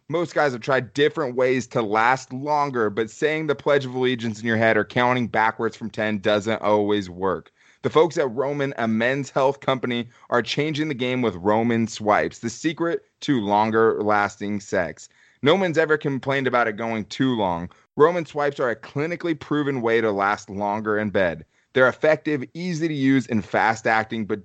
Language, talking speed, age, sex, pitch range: English, 185 wpm, 30-49, male, 110-135 Hz